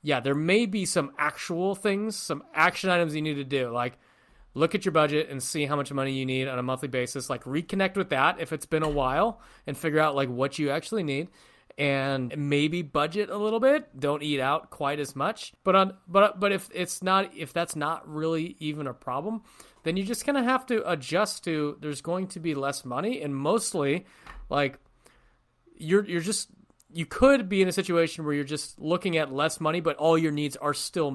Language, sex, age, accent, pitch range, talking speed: English, male, 30-49, American, 135-175 Hz, 220 wpm